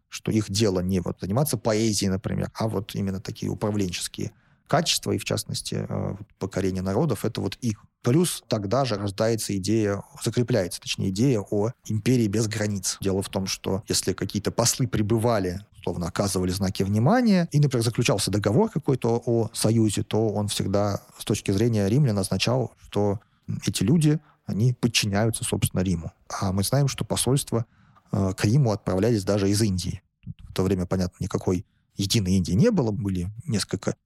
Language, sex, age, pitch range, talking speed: Russian, male, 30-49, 100-125 Hz, 155 wpm